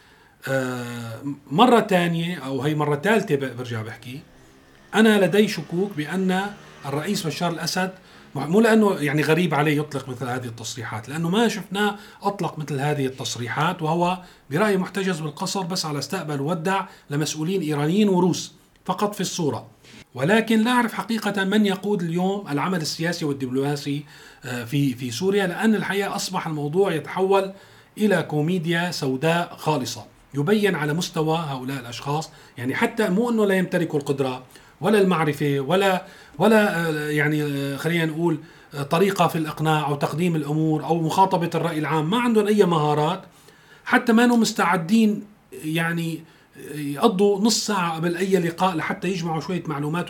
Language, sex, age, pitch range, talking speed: Arabic, male, 40-59, 145-195 Hz, 140 wpm